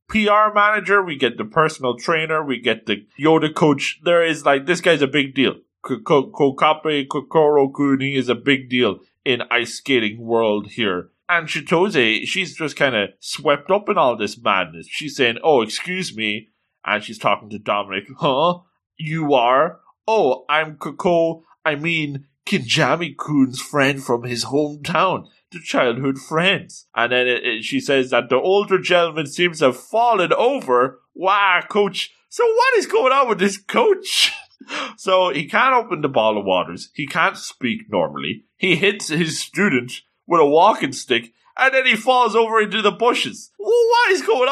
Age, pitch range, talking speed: 20-39, 130-200 Hz, 170 wpm